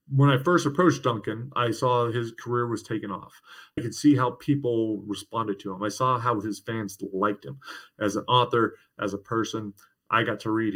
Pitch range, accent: 115-145 Hz, American